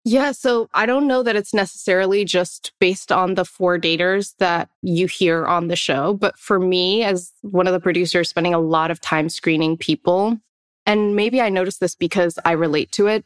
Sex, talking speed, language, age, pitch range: female, 205 wpm, English, 20-39, 165-200 Hz